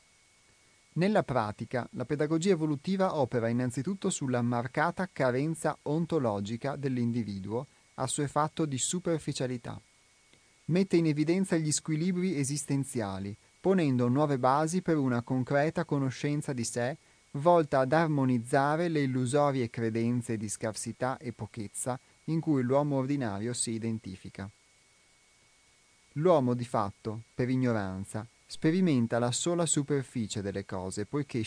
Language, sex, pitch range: Italian, male, 115-145 Hz